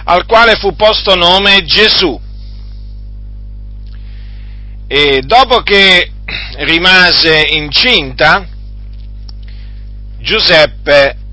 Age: 50-69